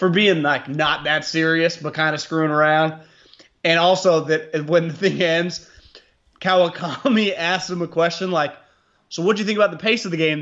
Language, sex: English, male